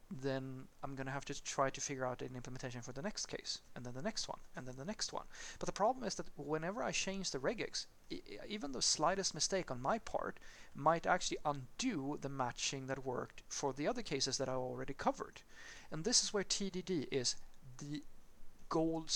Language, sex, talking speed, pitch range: English, male, 205 wpm, 130-165 Hz